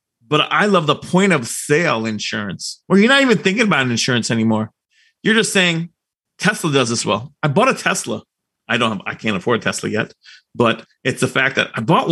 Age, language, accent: 30-49, English, American